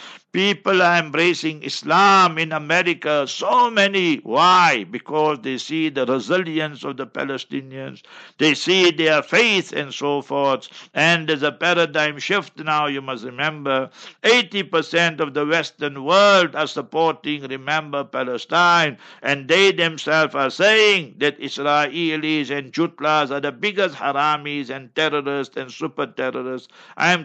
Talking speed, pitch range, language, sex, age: 135 wpm, 140-175 Hz, English, male, 60-79